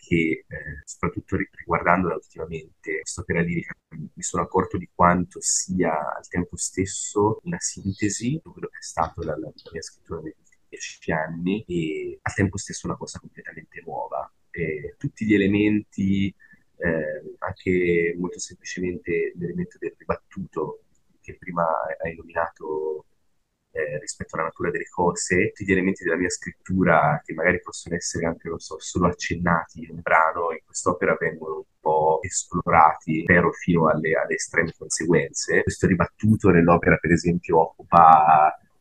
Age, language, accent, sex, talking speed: 30-49, Italian, native, male, 145 wpm